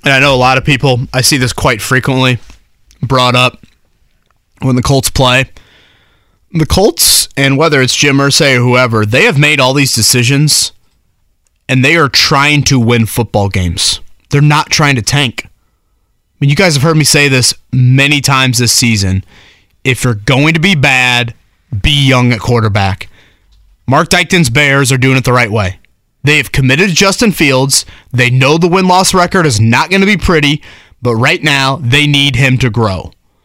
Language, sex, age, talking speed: English, male, 30-49, 185 wpm